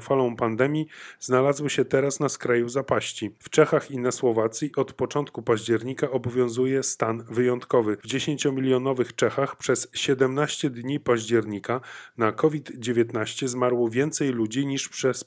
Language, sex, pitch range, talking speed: Polish, male, 120-140 Hz, 130 wpm